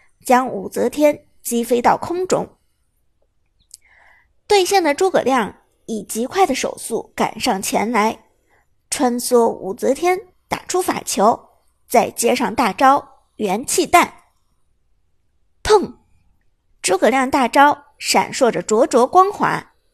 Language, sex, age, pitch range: Chinese, male, 50-69, 230-360 Hz